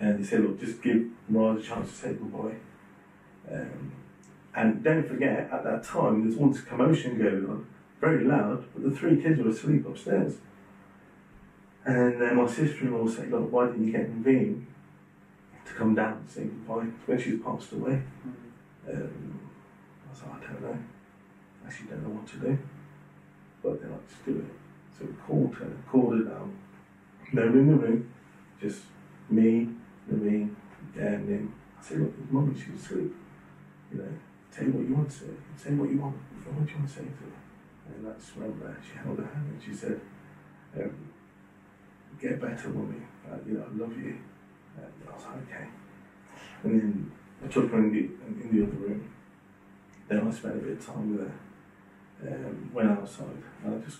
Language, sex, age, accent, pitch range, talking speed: English, male, 40-59, British, 105-130 Hz, 190 wpm